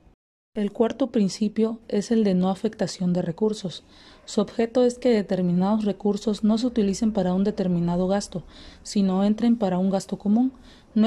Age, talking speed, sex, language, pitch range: 30-49, 165 wpm, female, Spanish, 185-220 Hz